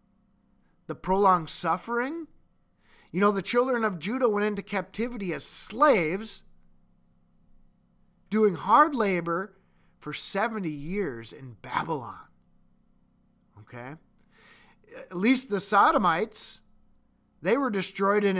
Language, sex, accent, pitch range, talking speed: English, male, American, 135-195 Hz, 100 wpm